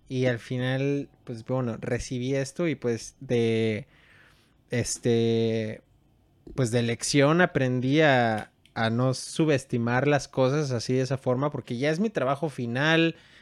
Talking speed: 140 wpm